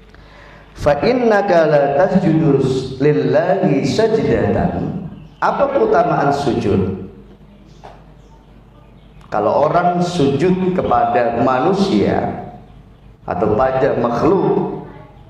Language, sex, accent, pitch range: Indonesian, male, native, 135-180 Hz